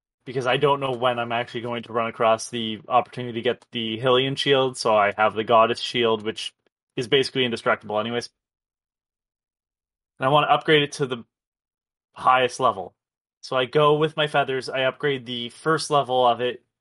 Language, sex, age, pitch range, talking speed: English, male, 20-39, 130-175 Hz, 185 wpm